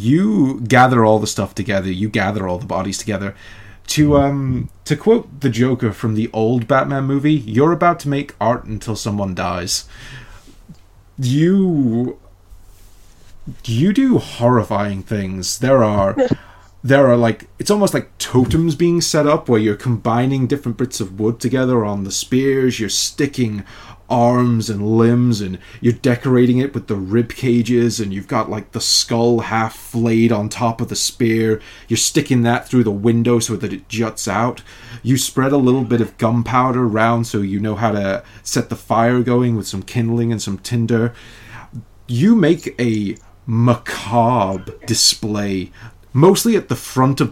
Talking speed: 165 wpm